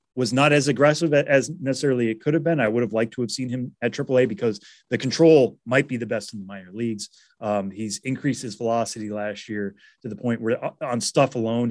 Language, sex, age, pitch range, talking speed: English, male, 30-49, 100-125 Hz, 230 wpm